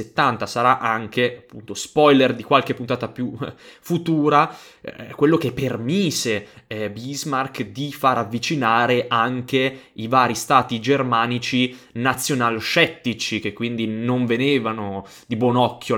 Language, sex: Italian, male